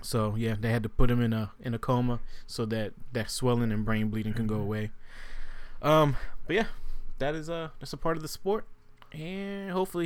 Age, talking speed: 20-39, 215 wpm